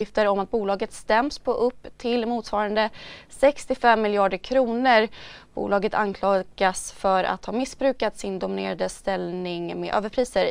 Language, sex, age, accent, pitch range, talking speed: Swedish, female, 20-39, native, 205-255 Hz, 130 wpm